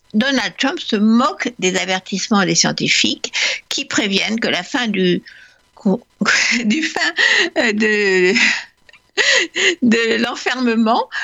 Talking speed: 100 wpm